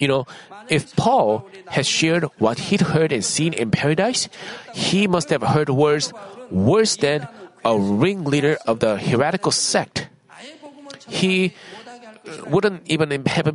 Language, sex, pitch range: Korean, male, 145-180 Hz